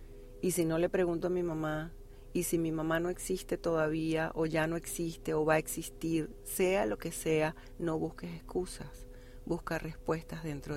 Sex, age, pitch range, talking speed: female, 40-59, 125-160 Hz, 185 wpm